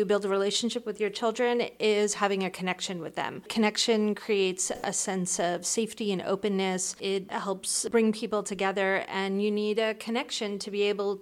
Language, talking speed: English, 175 wpm